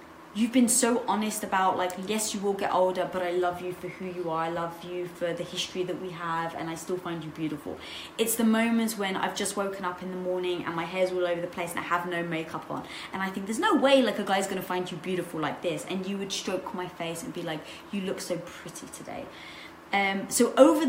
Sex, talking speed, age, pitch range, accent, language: female, 260 wpm, 20-39, 175-205 Hz, British, English